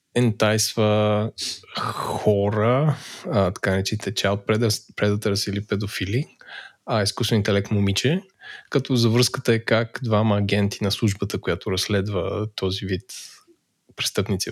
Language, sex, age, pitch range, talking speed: Bulgarian, male, 20-39, 100-125 Hz, 110 wpm